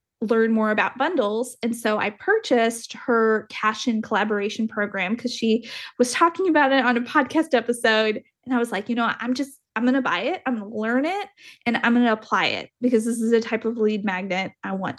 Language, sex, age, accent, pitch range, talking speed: English, female, 30-49, American, 220-260 Hz, 230 wpm